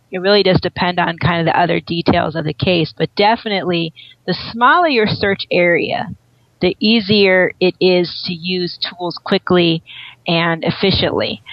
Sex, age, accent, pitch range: female, 30-49, American, 165-195 Hz